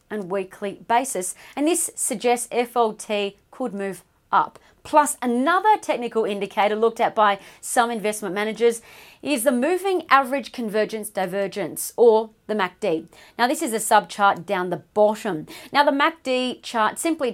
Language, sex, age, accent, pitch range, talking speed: English, female, 40-59, Australian, 210-280 Hz, 150 wpm